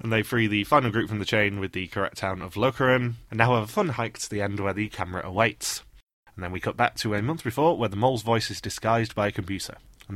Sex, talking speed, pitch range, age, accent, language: male, 280 wpm, 95-120 Hz, 20-39, British, English